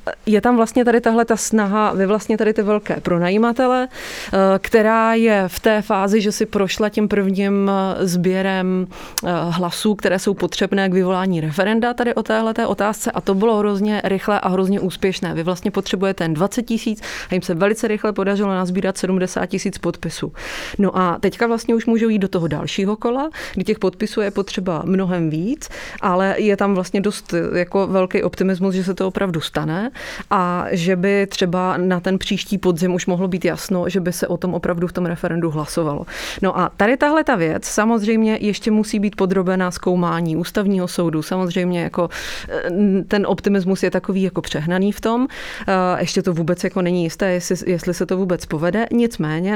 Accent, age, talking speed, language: Czech, 30-49, 180 wpm, English